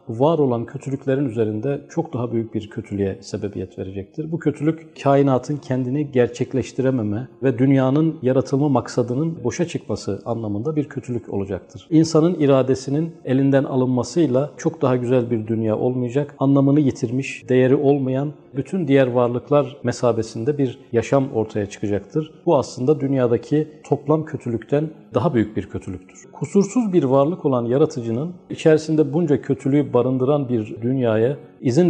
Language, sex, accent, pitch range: Turkish, male, native, 120-145 Hz